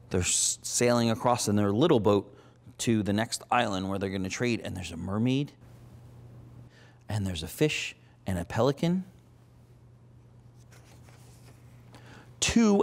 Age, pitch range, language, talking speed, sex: 40-59, 120-130 Hz, English, 125 wpm, male